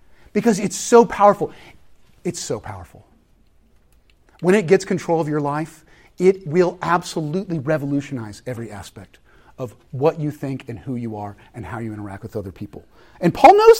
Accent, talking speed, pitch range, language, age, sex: American, 165 wpm, 130-190 Hz, English, 40-59, male